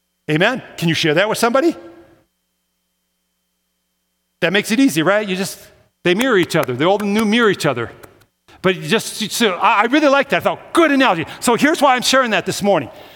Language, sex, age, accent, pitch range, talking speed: English, male, 50-69, American, 160-225 Hz, 220 wpm